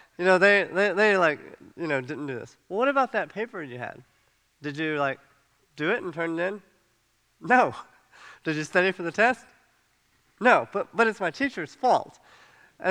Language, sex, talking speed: English, male, 195 wpm